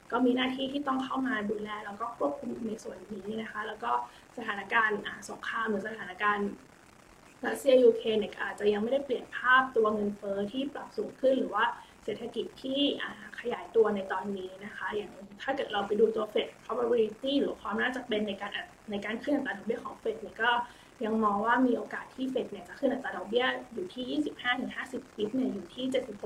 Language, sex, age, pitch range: Thai, female, 20-39, 210-255 Hz